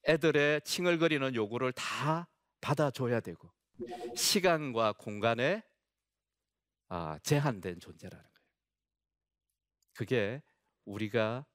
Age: 40-59